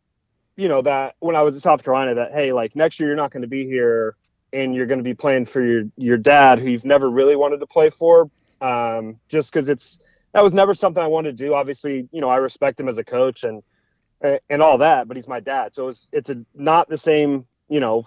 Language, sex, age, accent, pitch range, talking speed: English, male, 30-49, American, 125-155 Hz, 255 wpm